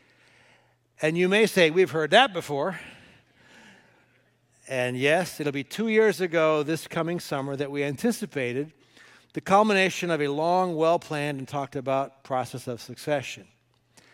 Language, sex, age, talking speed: English, male, 60-79, 140 wpm